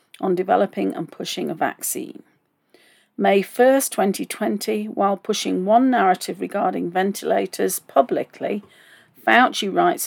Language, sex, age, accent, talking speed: English, female, 40-59, British, 105 wpm